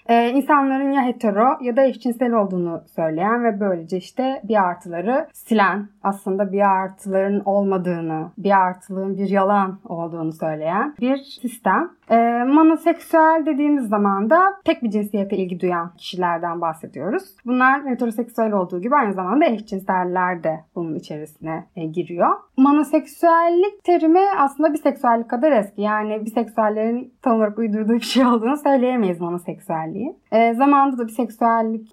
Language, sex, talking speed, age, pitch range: Turkish, female, 135 wpm, 30-49, 190-265 Hz